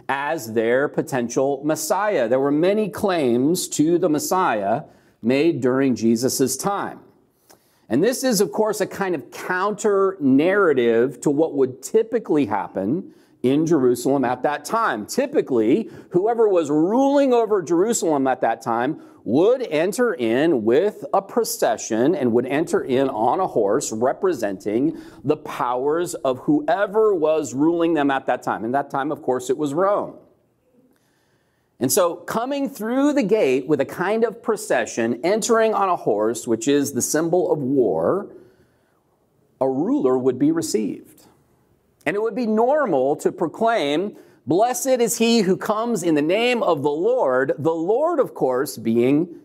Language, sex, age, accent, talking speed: English, male, 40-59, American, 150 wpm